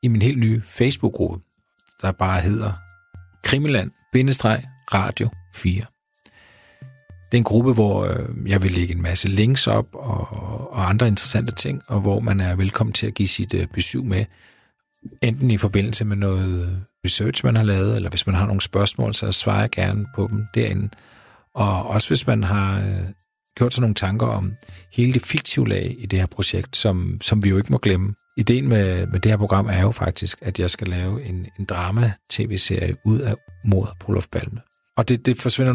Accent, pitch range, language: native, 95-115 Hz, Danish